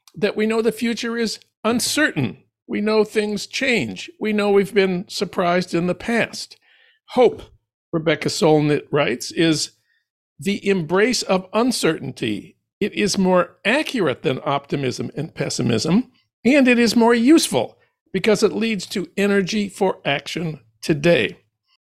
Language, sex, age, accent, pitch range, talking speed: English, male, 60-79, American, 155-215 Hz, 135 wpm